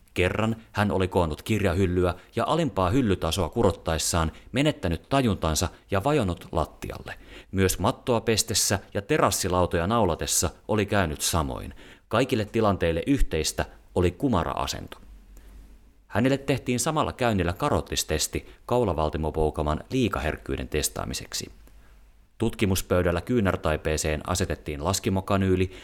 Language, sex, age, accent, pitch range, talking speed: Finnish, male, 30-49, native, 85-110 Hz, 95 wpm